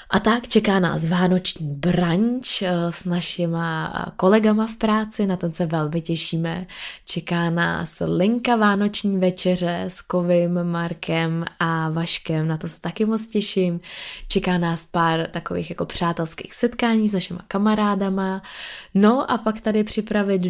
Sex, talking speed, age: female, 140 wpm, 20-39